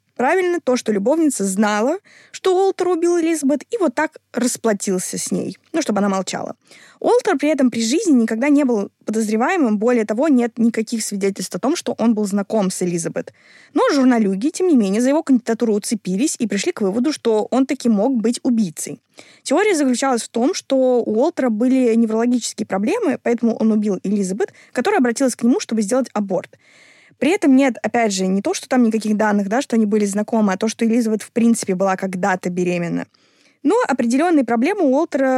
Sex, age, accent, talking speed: female, 20-39, native, 185 wpm